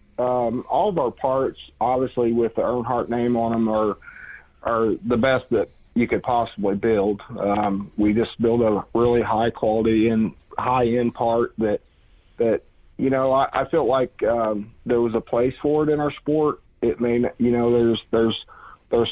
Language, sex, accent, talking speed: English, male, American, 180 wpm